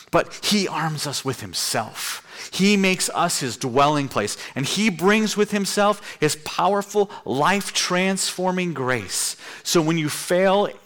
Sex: male